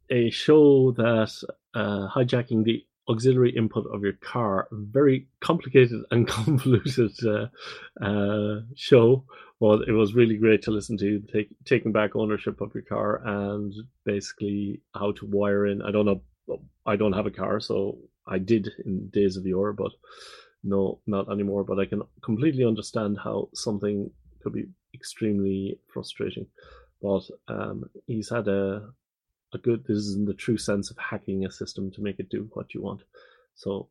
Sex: male